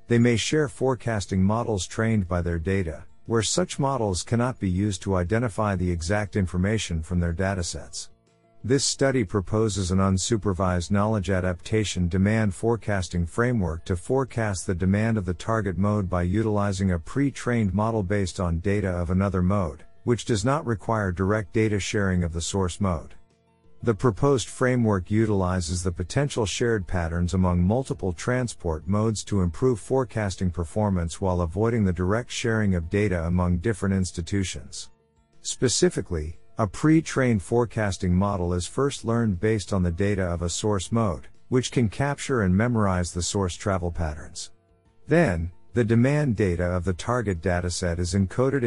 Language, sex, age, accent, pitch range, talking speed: English, male, 50-69, American, 90-115 Hz, 155 wpm